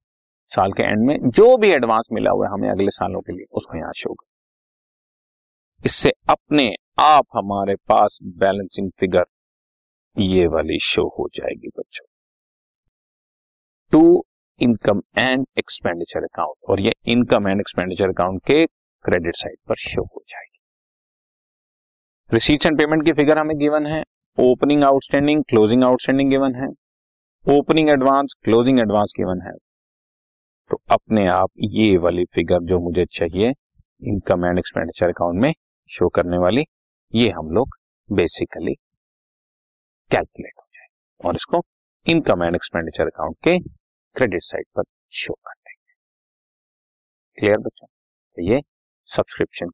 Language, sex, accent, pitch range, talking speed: Hindi, male, native, 95-150 Hz, 130 wpm